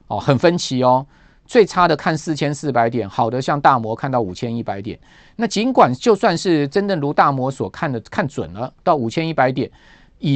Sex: male